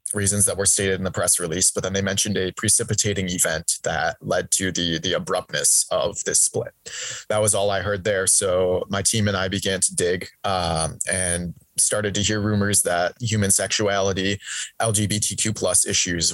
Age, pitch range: 20-39, 95-105 Hz